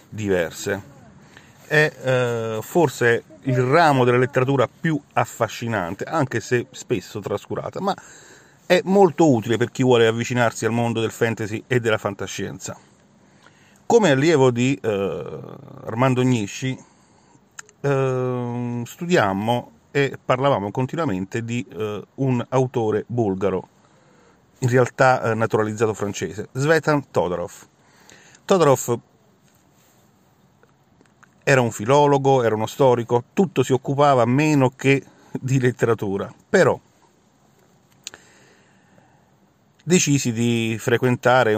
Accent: native